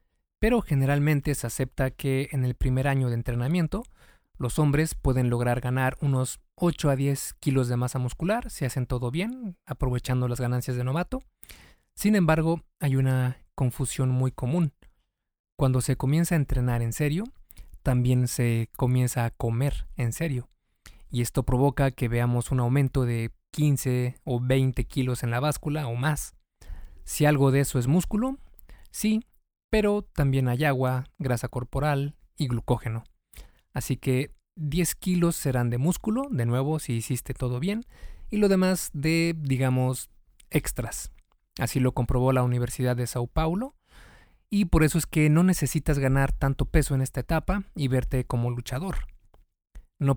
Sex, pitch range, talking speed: male, 125-155 Hz, 155 wpm